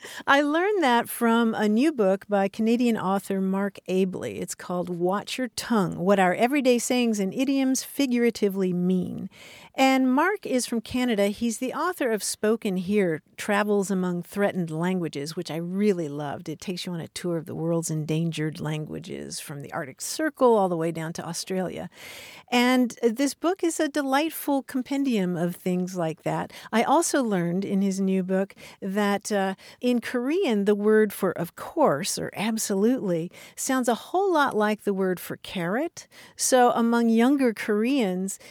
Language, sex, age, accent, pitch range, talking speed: English, female, 50-69, American, 185-245 Hz, 165 wpm